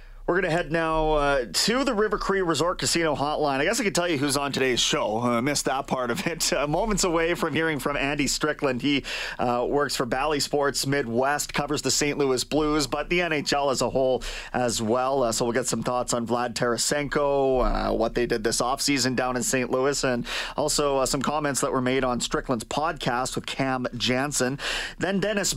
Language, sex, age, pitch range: English, male, 30-49, 125-160 Hz